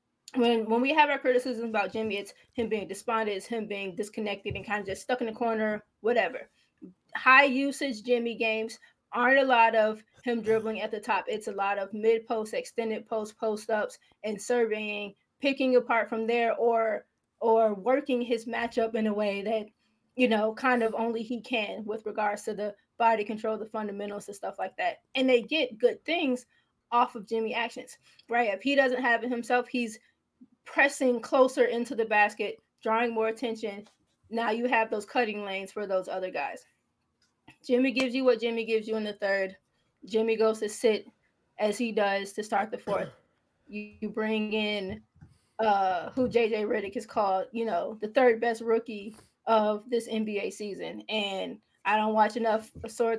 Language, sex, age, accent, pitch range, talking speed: English, female, 20-39, American, 210-240 Hz, 185 wpm